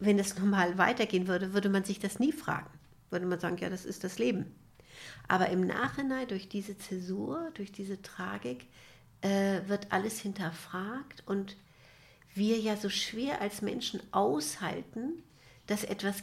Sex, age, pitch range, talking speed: female, 60-79, 150-210 Hz, 150 wpm